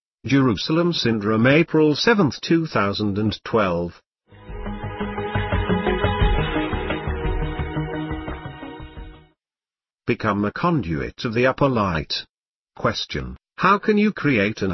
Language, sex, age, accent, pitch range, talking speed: English, male, 50-69, British, 100-145 Hz, 75 wpm